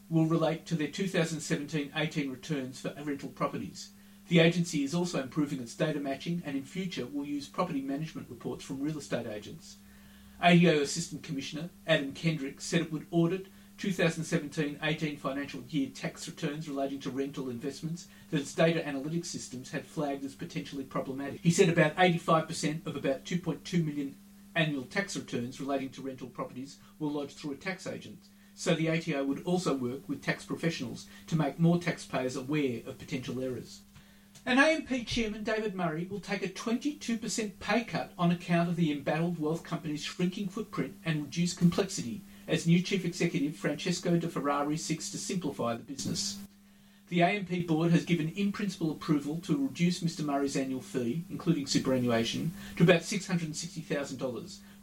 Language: English